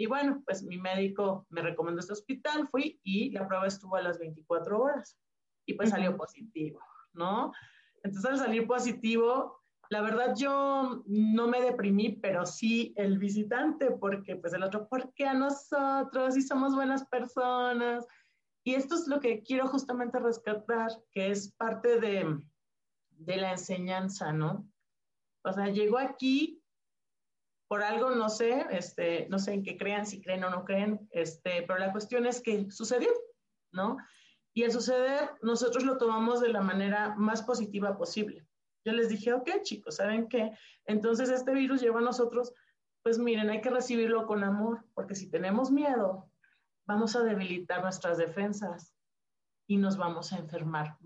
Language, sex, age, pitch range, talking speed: Spanish, male, 30-49, 190-250 Hz, 165 wpm